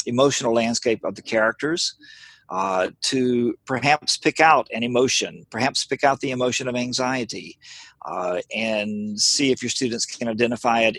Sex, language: male, English